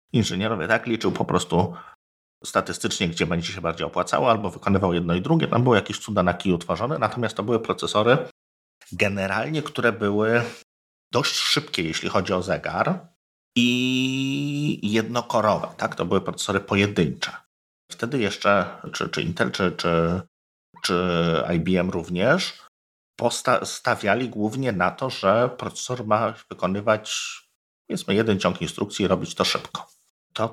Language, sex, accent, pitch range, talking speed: Polish, male, native, 85-115 Hz, 140 wpm